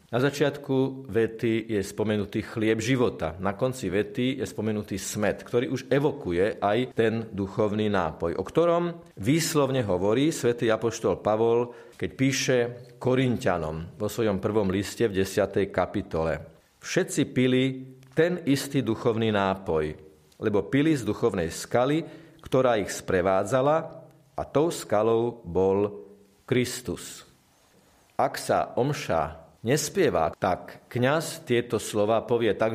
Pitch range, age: 100-135 Hz, 40-59